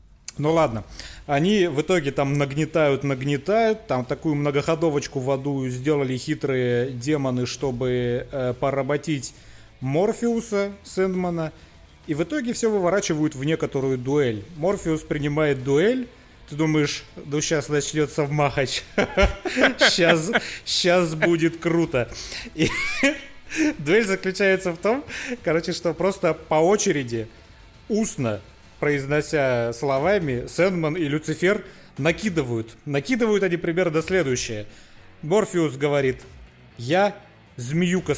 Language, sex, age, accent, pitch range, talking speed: Russian, male, 30-49, native, 140-185 Hz, 105 wpm